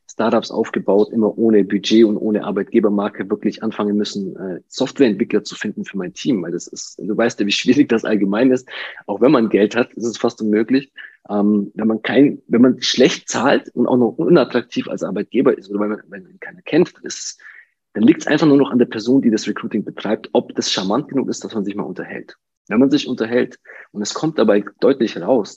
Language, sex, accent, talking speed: German, male, German, 215 wpm